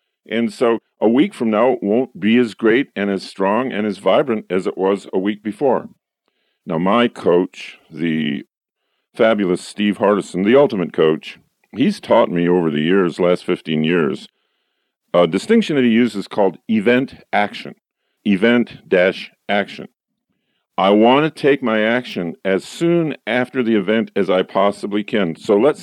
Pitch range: 100-125 Hz